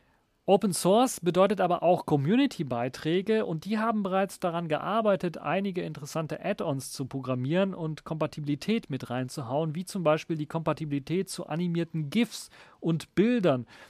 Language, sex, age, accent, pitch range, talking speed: German, male, 40-59, German, 130-155 Hz, 135 wpm